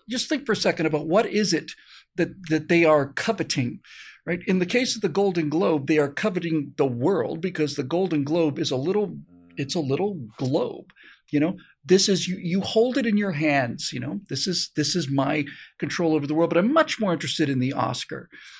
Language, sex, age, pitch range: English, male, 50-69, 155-220 Hz